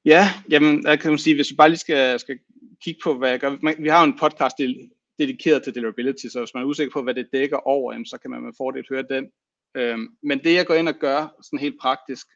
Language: Danish